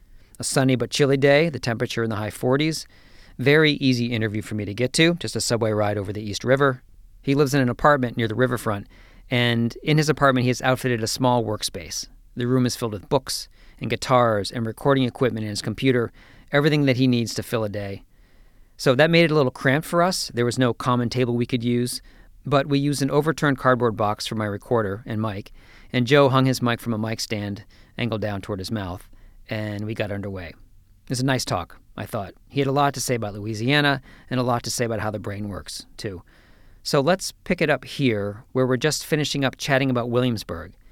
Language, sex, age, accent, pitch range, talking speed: English, male, 40-59, American, 105-130 Hz, 225 wpm